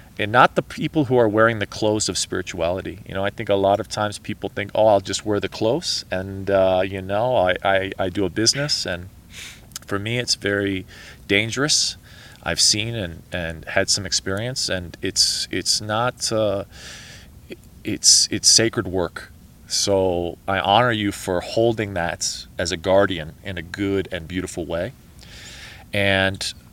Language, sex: English, male